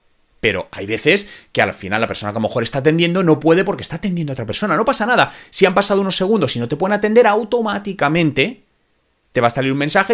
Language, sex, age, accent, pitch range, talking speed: Spanish, male, 30-49, Spanish, 120-185 Hz, 250 wpm